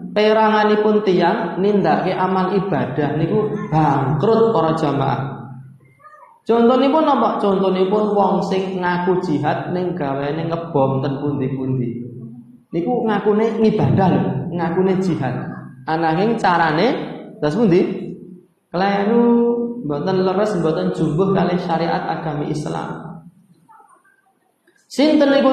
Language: Indonesian